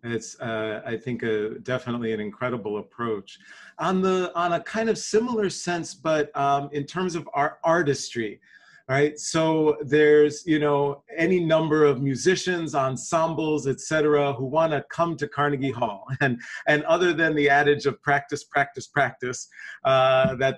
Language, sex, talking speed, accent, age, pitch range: English, male, 155 wpm, American, 40-59, 130-160 Hz